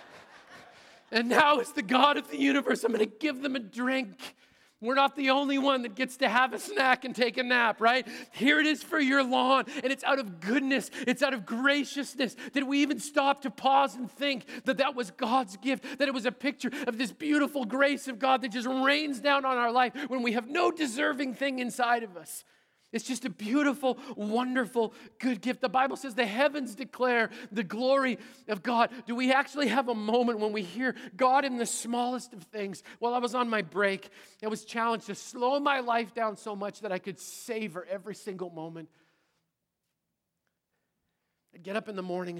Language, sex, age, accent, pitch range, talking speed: English, male, 40-59, American, 175-260 Hz, 210 wpm